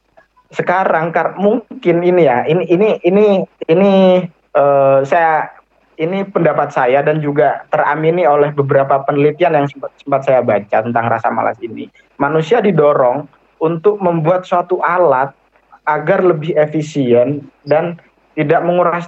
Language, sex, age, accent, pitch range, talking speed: Indonesian, male, 20-39, native, 140-180 Hz, 130 wpm